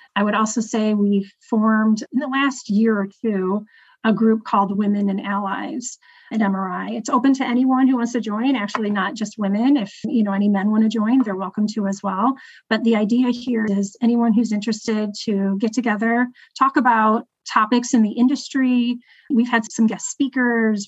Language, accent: English, American